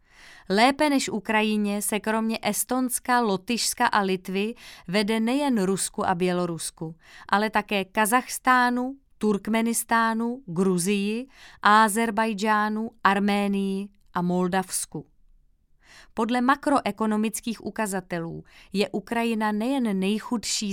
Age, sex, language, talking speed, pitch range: 20-39, female, Czech, 85 wpm, 190-230 Hz